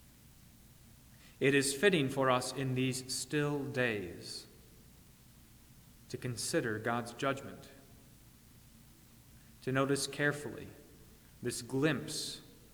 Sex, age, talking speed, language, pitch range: male, 30-49, 85 wpm, English, 120-145 Hz